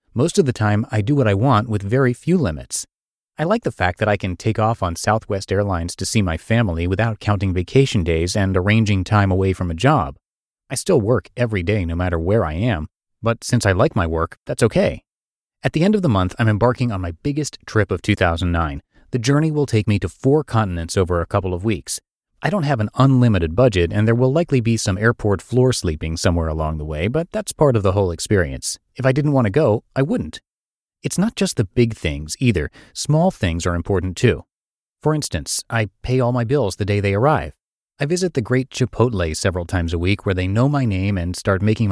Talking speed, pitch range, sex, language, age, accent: 230 wpm, 95-125 Hz, male, English, 30-49, American